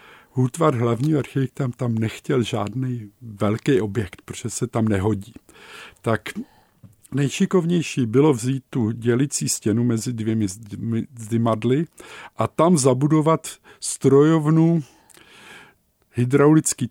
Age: 50-69